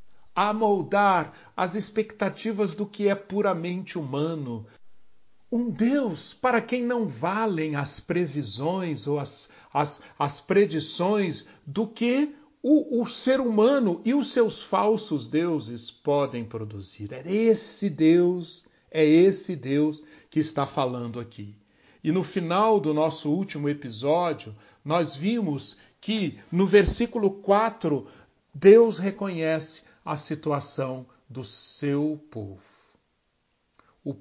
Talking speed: 115 wpm